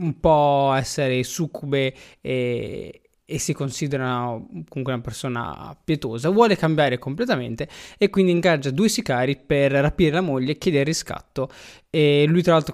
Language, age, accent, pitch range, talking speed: Italian, 20-39, native, 130-160 Hz, 150 wpm